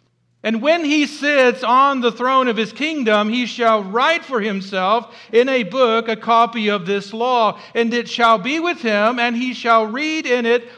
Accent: American